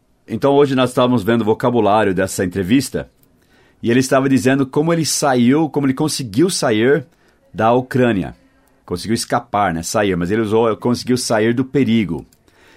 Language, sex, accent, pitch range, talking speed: English, male, Brazilian, 110-130 Hz, 155 wpm